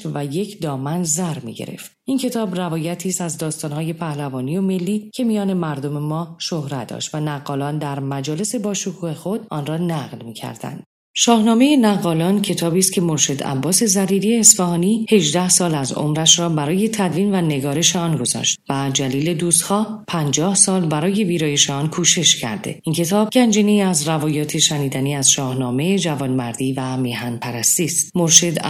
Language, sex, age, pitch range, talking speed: Persian, female, 40-59, 145-190 Hz, 155 wpm